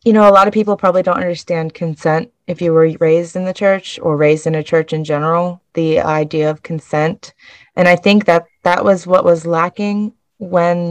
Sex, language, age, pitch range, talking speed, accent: female, English, 30-49, 160-180 Hz, 210 wpm, American